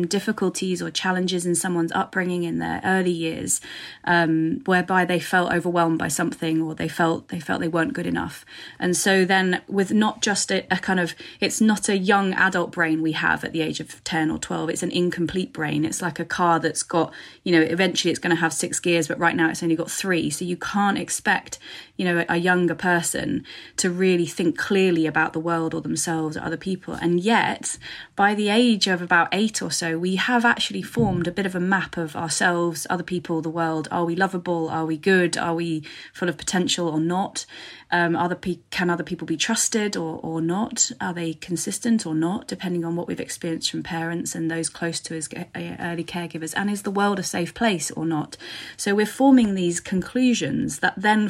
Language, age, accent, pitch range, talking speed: English, 20-39, British, 165-190 Hz, 210 wpm